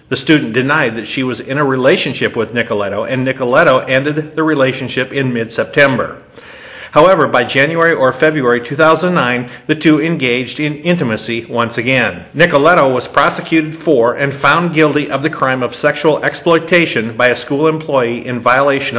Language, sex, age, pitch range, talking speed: English, male, 50-69, 130-160 Hz, 160 wpm